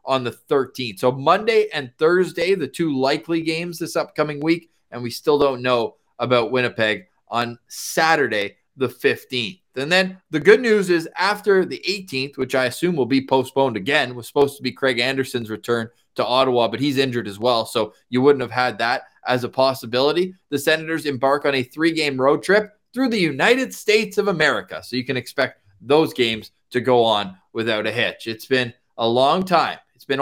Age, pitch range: 20-39, 125-160 Hz